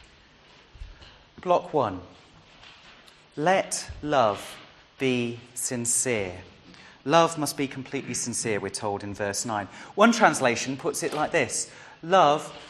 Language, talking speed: English, 110 wpm